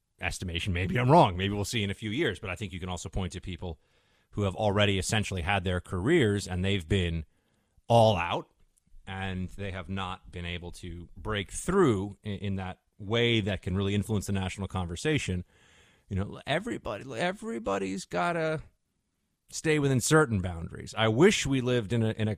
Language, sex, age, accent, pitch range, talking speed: English, male, 30-49, American, 95-115 Hz, 190 wpm